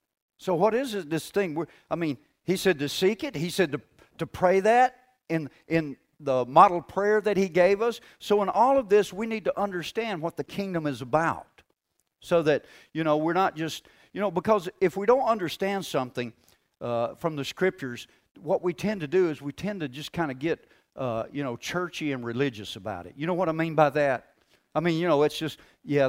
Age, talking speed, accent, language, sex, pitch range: 50-69, 225 wpm, American, English, male, 135-180 Hz